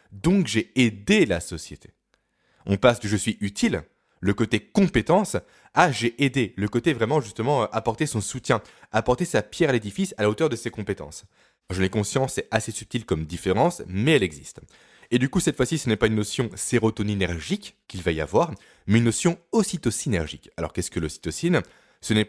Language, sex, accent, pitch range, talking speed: French, male, French, 90-130 Hz, 205 wpm